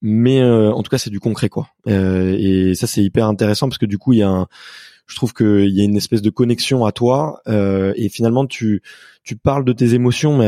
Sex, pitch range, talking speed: male, 100-120 Hz, 250 wpm